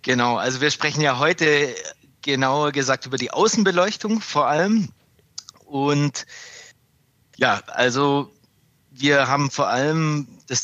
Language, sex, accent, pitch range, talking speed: German, male, German, 120-150 Hz, 120 wpm